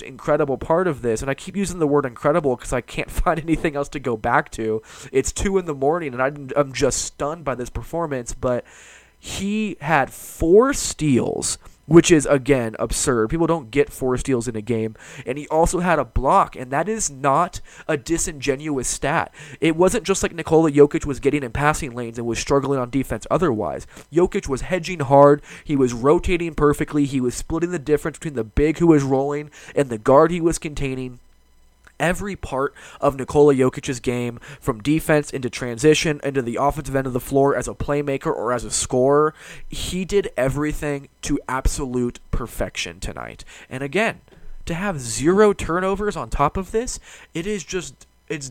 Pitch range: 125-155 Hz